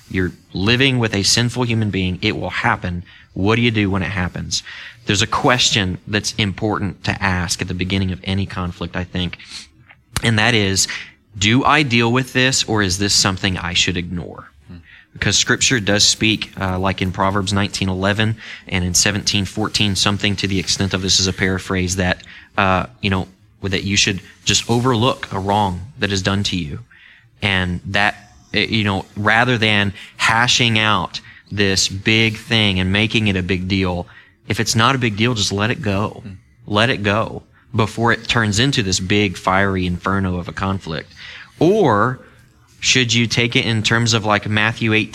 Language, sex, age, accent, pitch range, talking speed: English, male, 20-39, American, 95-115 Hz, 180 wpm